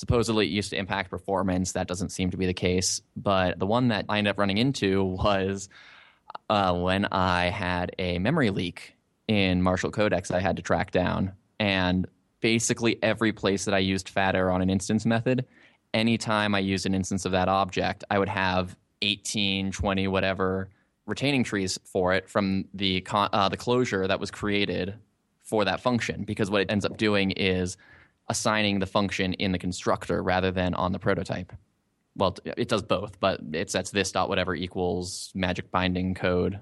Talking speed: 185 wpm